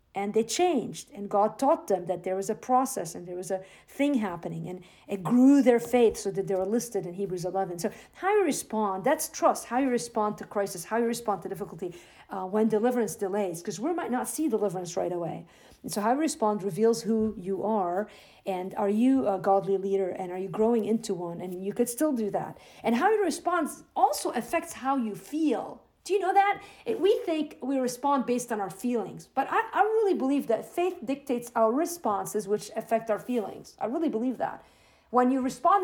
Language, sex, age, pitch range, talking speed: English, female, 50-69, 200-275 Hz, 215 wpm